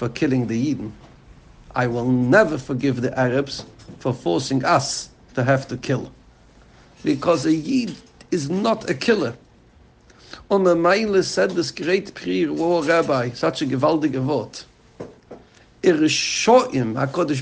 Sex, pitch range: male, 155-205 Hz